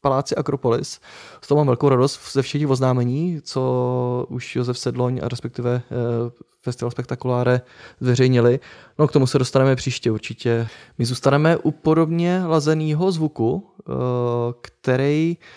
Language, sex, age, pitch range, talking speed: Czech, male, 20-39, 130-160 Hz, 125 wpm